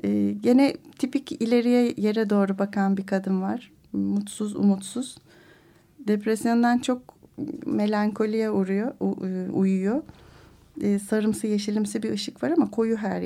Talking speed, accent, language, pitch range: 110 wpm, native, Turkish, 200-245 Hz